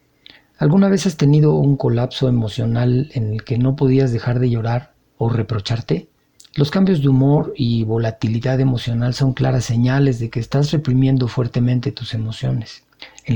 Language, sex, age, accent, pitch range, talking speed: Spanish, male, 40-59, Mexican, 115-140 Hz, 155 wpm